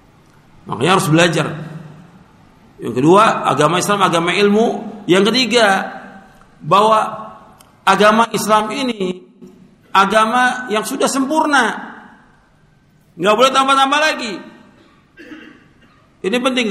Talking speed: 90 wpm